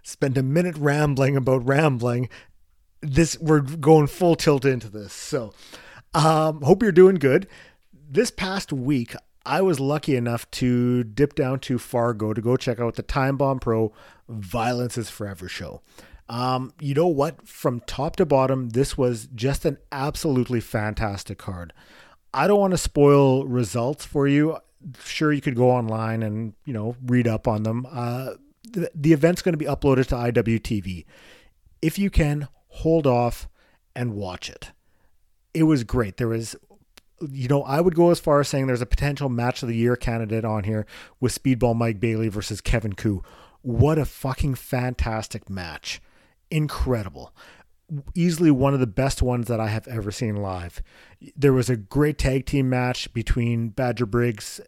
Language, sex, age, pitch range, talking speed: English, male, 40-59, 115-145 Hz, 170 wpm